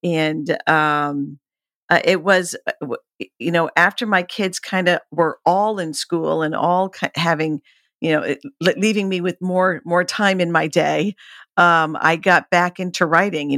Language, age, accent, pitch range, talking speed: English, 50-69, American, 150-180 Hz, 170 wpm